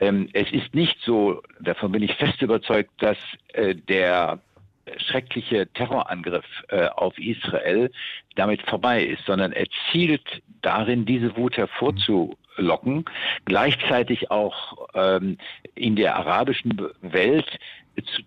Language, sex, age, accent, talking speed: German, male, 60-79, German, 105 wpm